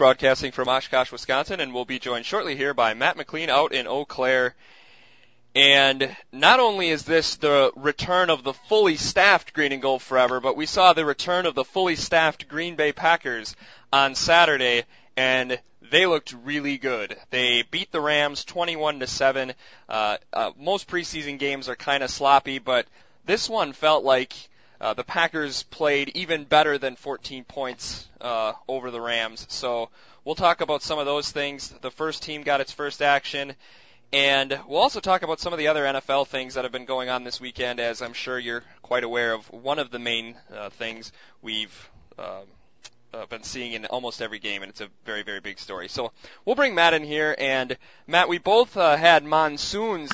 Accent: American